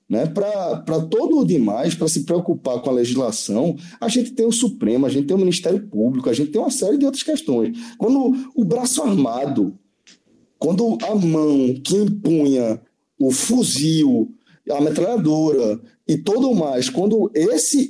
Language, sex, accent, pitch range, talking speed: Portuguese, male, Brazilian, 150-250 Hz, 160 wpm